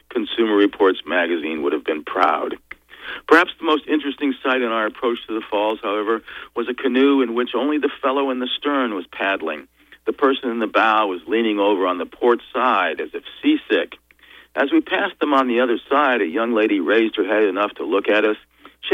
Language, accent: English, American